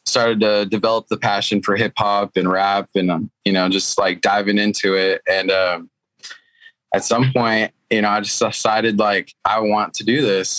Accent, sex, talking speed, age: American, male, 195 wpm, 20-39